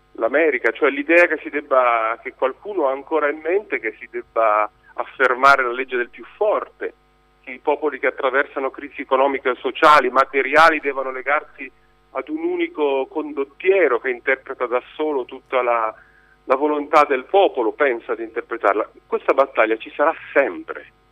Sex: male